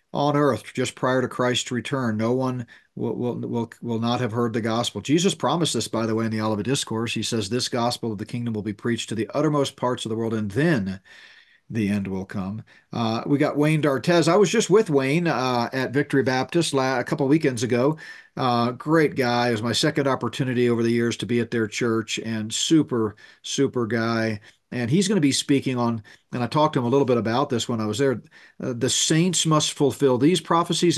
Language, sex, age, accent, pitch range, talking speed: English, male, 40-59, American, 115-135 Hz, 230 wpm